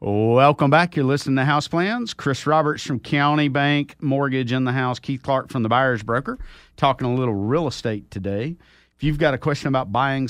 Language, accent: English, American